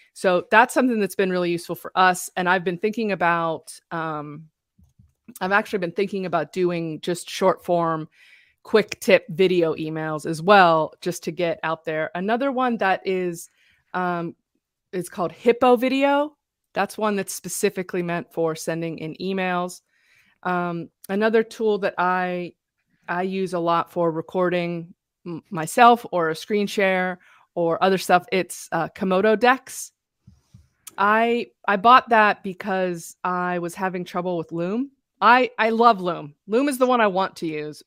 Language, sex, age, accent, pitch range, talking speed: English, female, 20-39, American, 170-210 Hz, 155 wpm